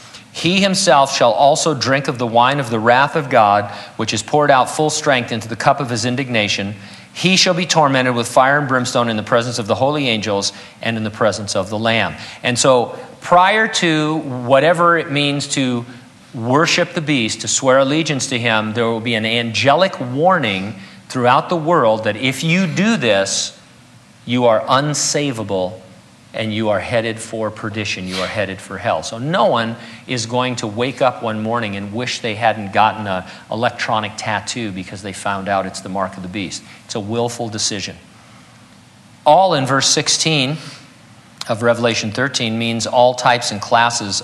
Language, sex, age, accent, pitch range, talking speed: English, male, 40-59, American, 110-140 Hz, 185 wpm